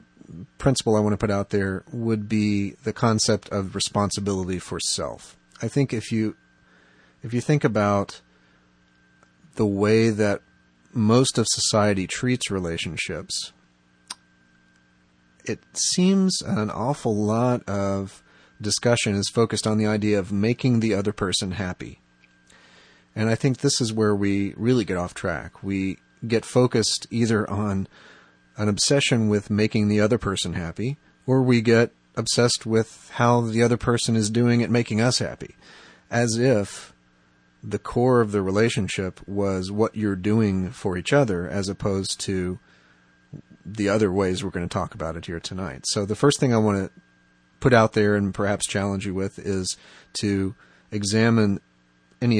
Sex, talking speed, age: male, 155 wpm, 40-59